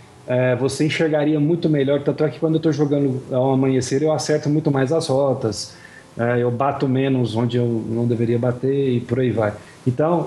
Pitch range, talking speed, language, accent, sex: 130-165 Hz, 205 wpm, Portuguese, Brazilian, male